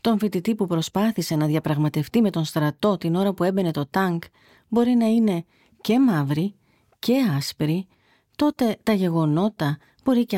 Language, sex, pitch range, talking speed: Greek, female, 150-215 Hz, 155 wpm